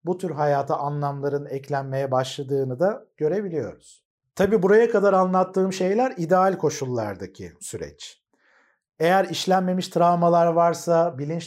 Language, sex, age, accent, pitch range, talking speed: Turkish, male, 50-69, native, 145-185 Hz, 110 wpm